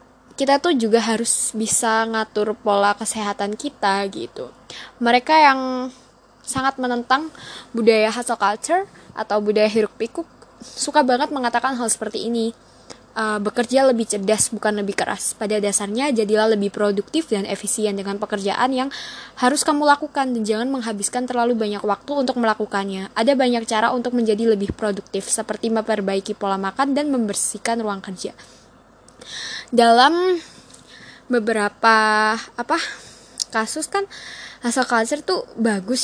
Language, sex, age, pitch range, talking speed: Indonesian, female, 10-29, 215-260 Hz, 130 wpm